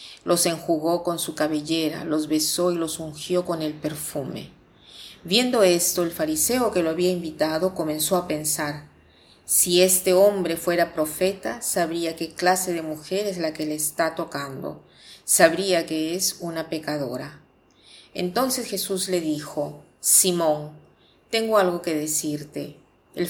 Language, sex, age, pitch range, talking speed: Spanish, female, 40-59, 155-185 Hz, 140 wpm